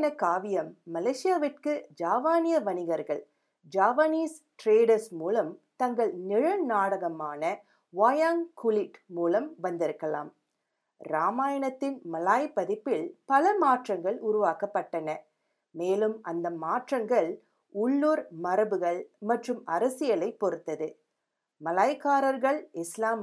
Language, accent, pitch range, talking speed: Tamil, native, 175-275 Hz, 75 wpm